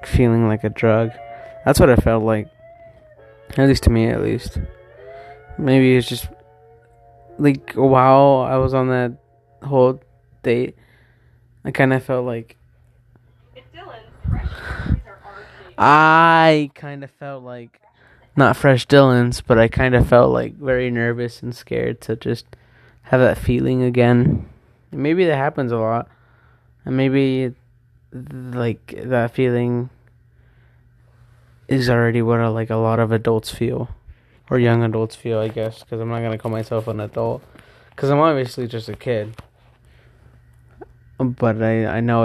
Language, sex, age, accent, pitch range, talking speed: English, male, 20-39, American, 115-130 Hz, 140 wpm